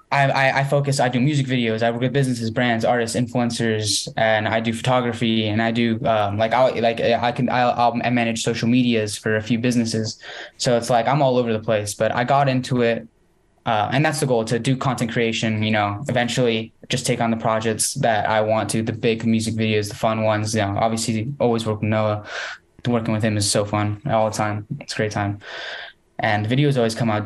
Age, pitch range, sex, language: 10-29, 110-125 Hz, male, English